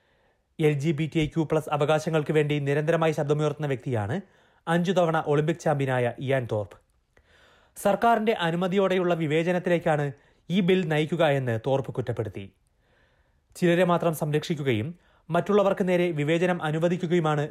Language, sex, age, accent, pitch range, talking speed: Malayalam, male, 30-49, native, 135-175 Hz, 115 wpm